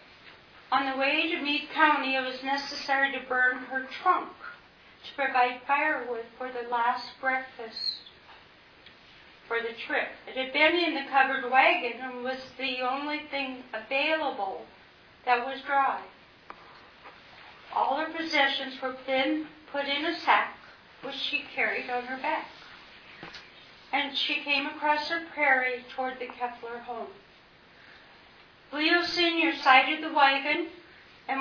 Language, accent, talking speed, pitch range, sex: English, American, 135 wpm, 245-290 Hz, female